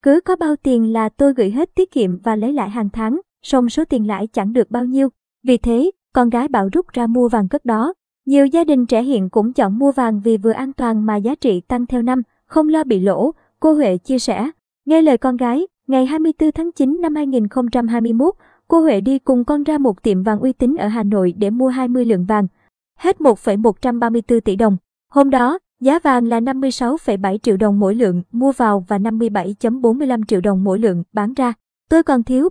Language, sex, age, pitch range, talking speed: Vietnamese, male, 20-39, 225-275 Hz, 215 wpm